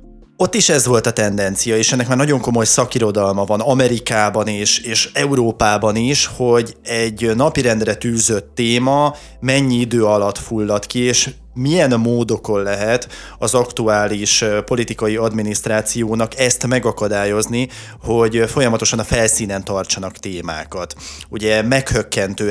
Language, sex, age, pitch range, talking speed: Hungarian, male, 20-39, 105-125 Hz, 125 wpm